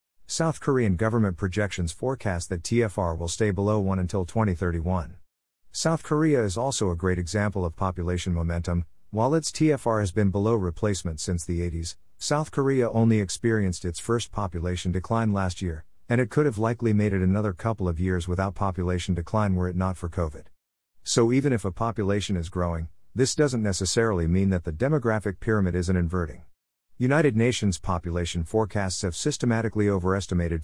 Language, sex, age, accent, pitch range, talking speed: English, male, 50-69, American, 85-115 Hz, 170 wpm